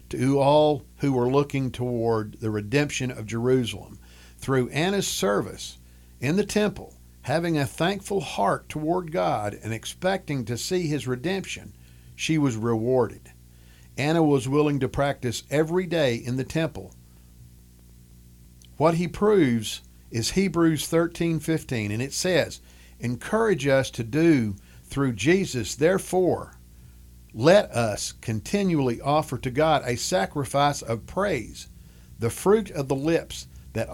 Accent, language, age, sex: American, English, 50-69, male